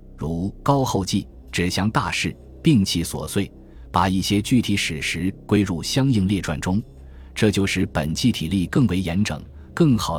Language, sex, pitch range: Chinese, male, 80-110 Hz